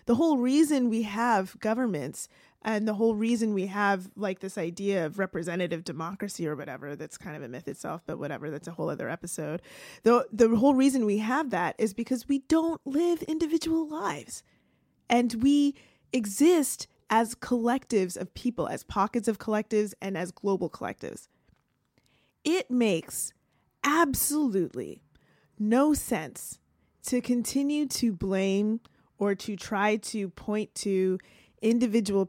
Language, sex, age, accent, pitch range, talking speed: English, female, 20-39, American, 195-250 Hz, 145 wpm